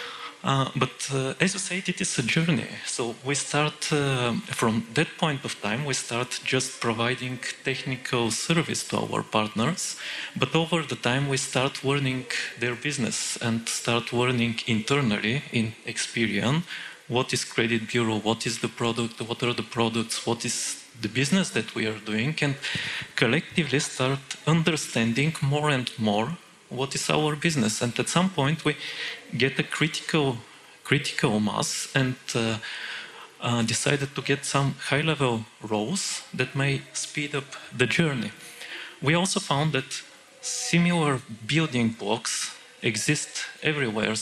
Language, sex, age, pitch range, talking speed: Bulgarian, male, 30-49, 115-150 Hz, 145 wpm